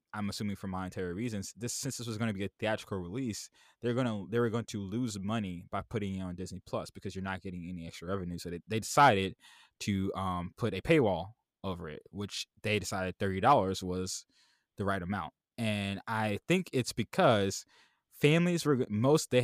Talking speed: 200 wpm